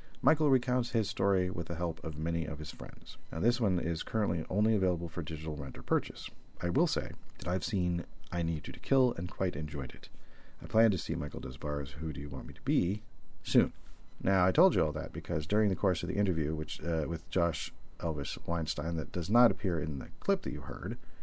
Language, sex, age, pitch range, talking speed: English, male, 40-59, 80-105 Hz, 230 wpm